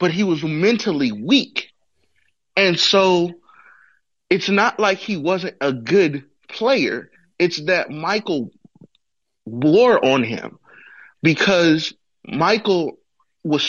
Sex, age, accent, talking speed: male, 30-49, American, 105 wpm